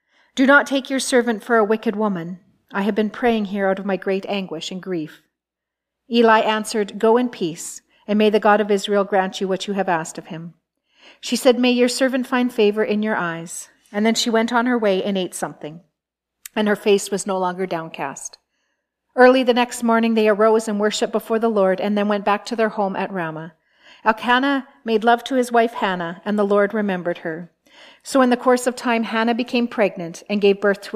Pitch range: 190-240 Hz